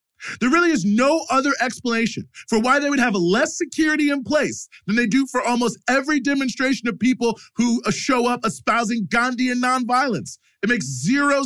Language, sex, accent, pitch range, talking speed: English, male, American, 155-245 Hz, 175 wpm